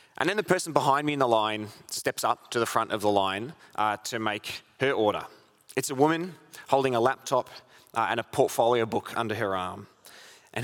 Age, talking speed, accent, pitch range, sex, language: 20-39, 210 wpm, Australian, 105-135 Hz, male, English